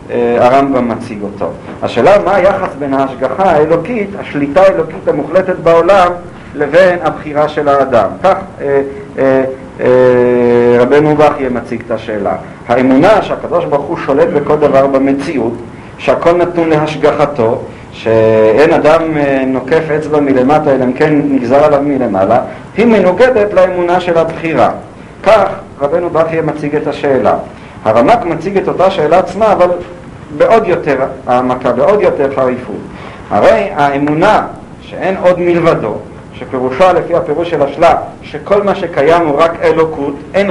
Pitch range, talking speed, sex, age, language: 135-180 Hz, 125 wpm, male, 50-69, English